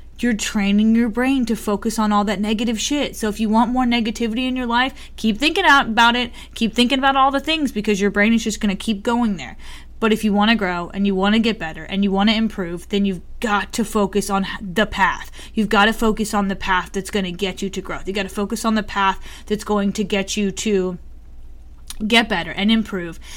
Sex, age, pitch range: female, 20-39, 195-230 Hz